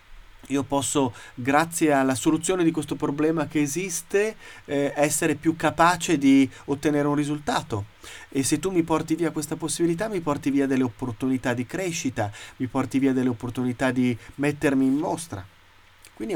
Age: 30-49